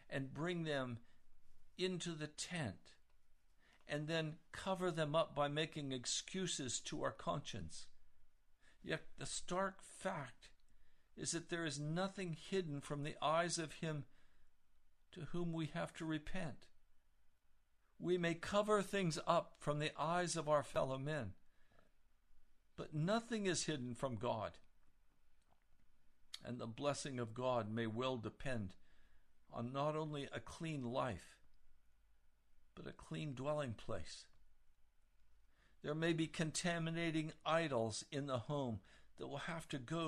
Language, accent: English, American